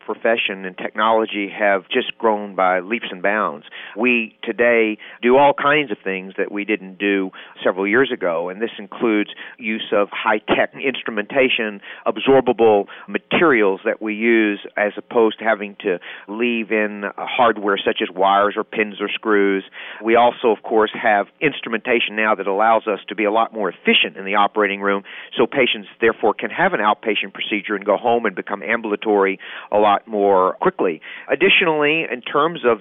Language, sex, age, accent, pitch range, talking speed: English, male, 40-59, American, 105-120 Hz, 170 wpm